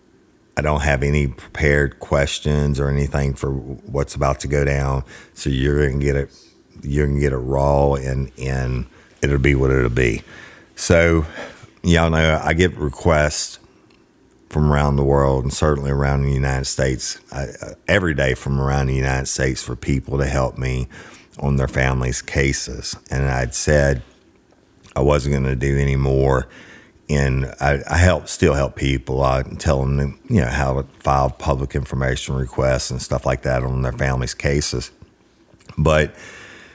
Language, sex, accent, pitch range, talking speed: English, male, American, 65-70 Hz, 165 wpm